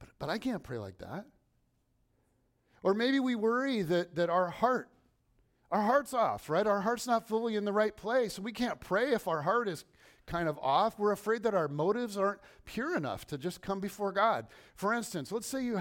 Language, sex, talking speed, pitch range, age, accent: English, male, 210 wpm, 135-205 Hz, 50-69, American